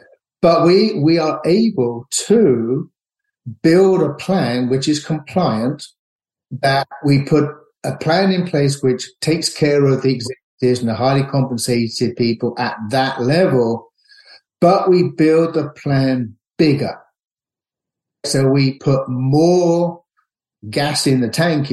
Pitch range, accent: 125-155 Hz, British